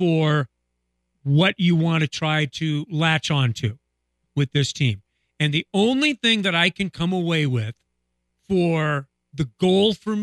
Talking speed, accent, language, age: 160 wpm, American, English, 50-69